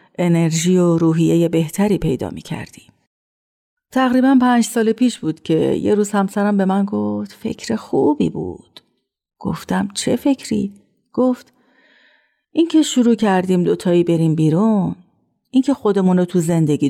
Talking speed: 130 wpm